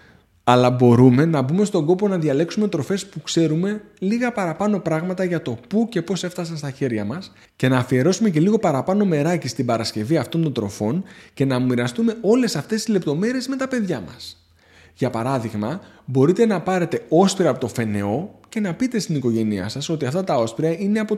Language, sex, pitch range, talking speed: Greek, male, 120-205 Hz, 190 wpm